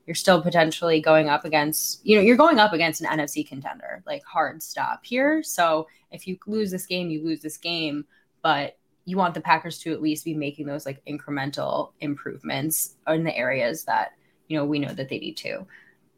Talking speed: 200 wpm